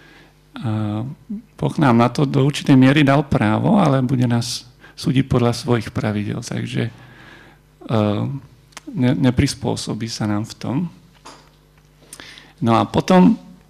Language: Slovak